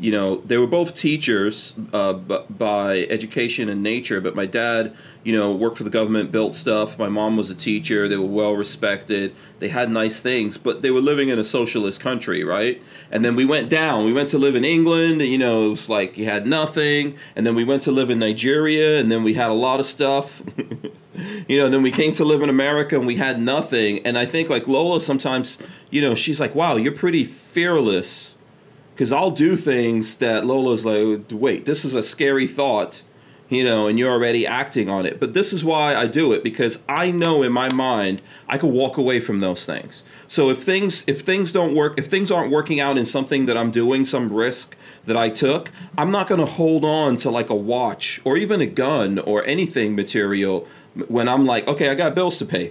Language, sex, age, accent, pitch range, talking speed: English, male, 30-49, American, 110-150 Hz, 225 wpm